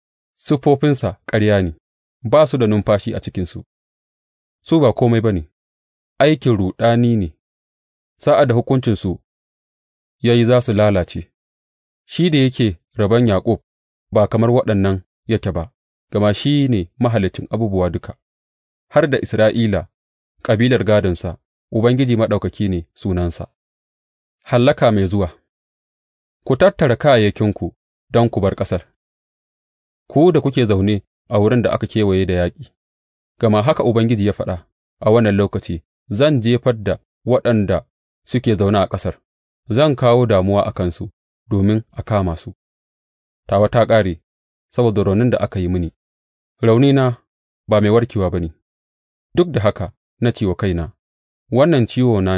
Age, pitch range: 30-49, 85-115 Hz